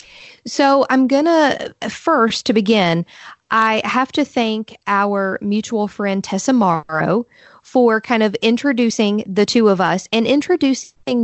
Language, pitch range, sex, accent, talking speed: English, 195-240 Hz, female, American, 140 wpm